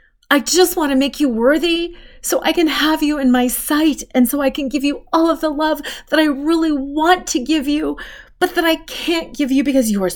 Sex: female